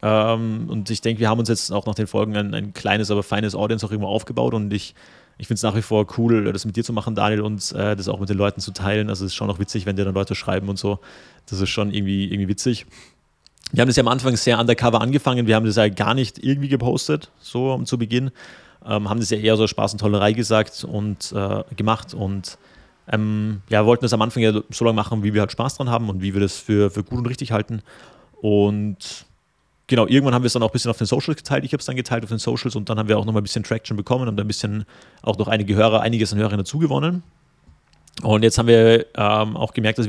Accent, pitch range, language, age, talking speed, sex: German, 105-115 Hz, German, 30-49, 270 wpm, male